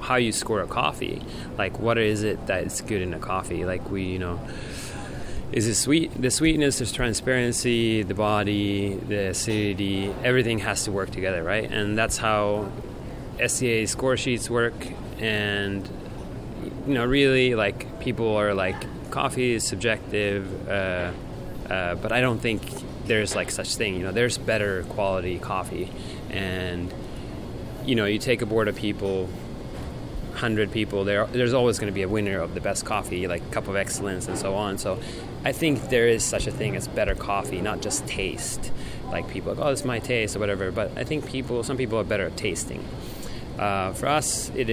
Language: English